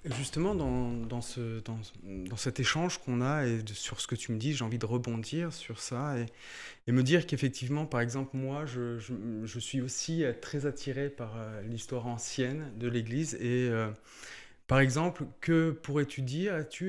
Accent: French